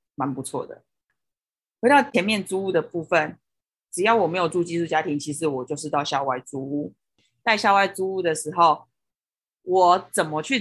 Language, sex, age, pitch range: Chinese, female, 20-39, 145-185 Hz